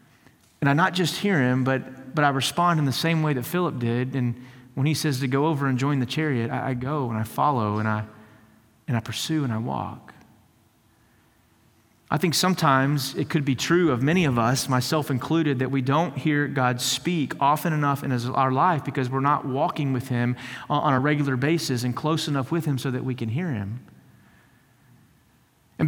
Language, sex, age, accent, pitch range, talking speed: English, male, 30-49, American, 125-155 Hz, 205 wpm